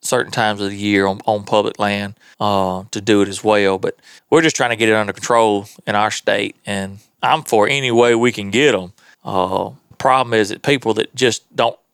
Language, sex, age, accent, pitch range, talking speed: English, male, 30-49, American, 105-130 Hz, 220 wpm